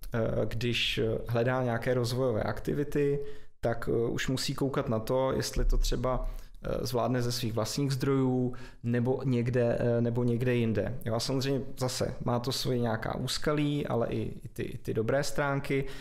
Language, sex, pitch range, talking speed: Czech, male, 115-130 Hz, 145 wpm